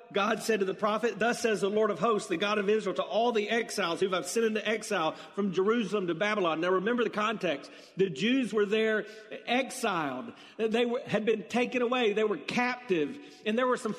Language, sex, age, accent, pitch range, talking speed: English, male, 40-59, American, 160-235 Hz, 215 wpm